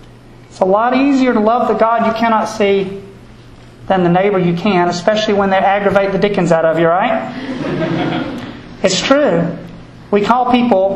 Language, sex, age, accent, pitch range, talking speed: English, male, 40-59, American, 190-245 Hz, 170 wpm